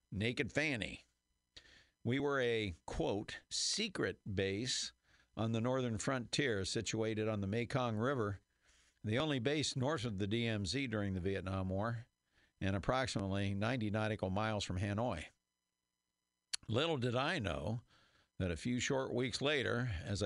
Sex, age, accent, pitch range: male, 50-69, American, 95-120 Hz